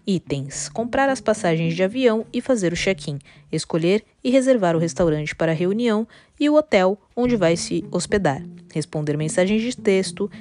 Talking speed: 165 wpm